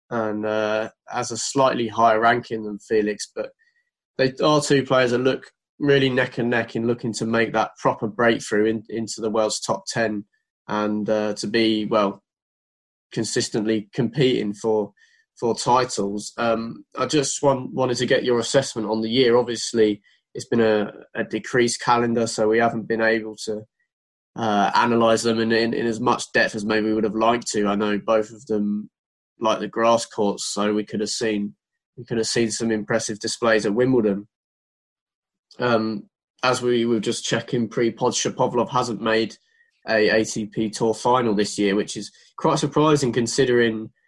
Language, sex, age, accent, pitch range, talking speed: English, male, 20-39, British, 110-120 Hz, 175 wpm